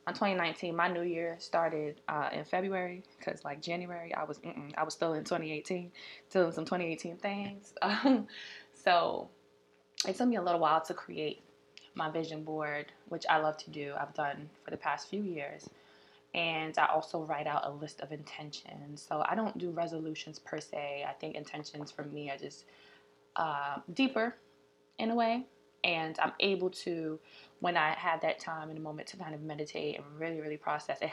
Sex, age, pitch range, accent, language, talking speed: female, 20-39, 145-175 Hz, American, English, 185 wpm